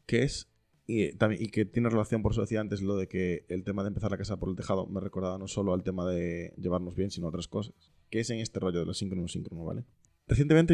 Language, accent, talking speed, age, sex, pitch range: Spanish, Spanish, 270 wpm, 20-39, male, 95-115 Hz